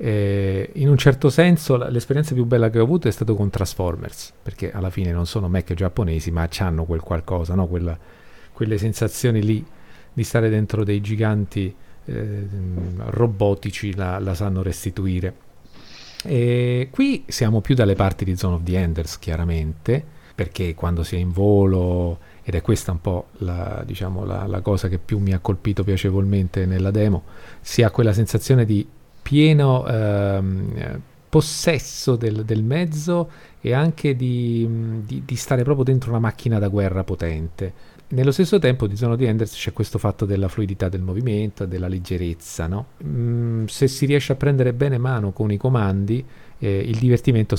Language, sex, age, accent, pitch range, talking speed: Italian, male, 40-59, native, 95-120 Hz, 165 wpm